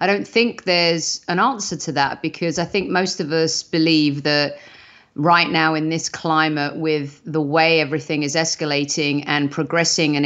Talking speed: 175 wpm